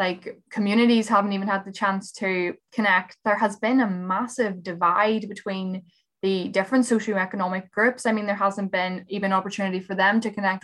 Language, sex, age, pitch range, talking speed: English, female, 10-29, 190-220 Hz, 175 wpm